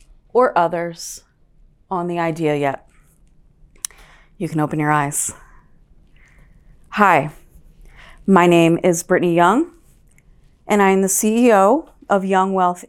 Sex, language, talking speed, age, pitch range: female, English, 110 wpm, 30-49, 180-225 Hz